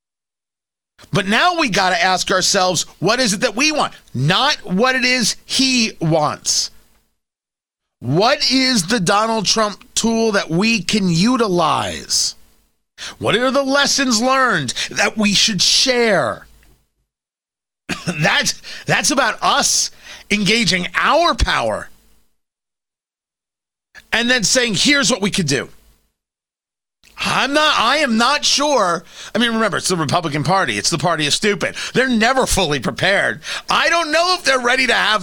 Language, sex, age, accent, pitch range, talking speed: English, male, 30-49, American, 160-245 Hz, 140 wpm